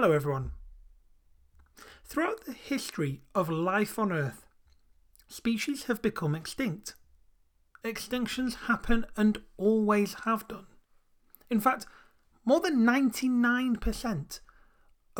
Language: English